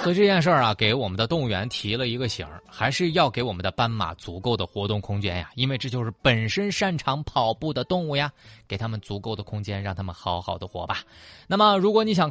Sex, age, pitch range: male, 20-39, 100-165 Hz